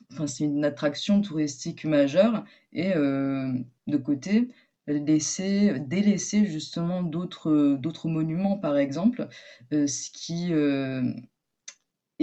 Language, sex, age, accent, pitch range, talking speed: French, female, 20-39, French, 155-205 Hz, 110 wpm